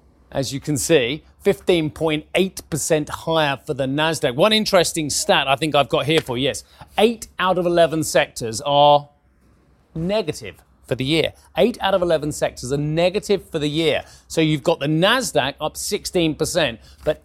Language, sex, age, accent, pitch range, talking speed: English, male, 30-49, British, 135-175 Hz, 165 wpm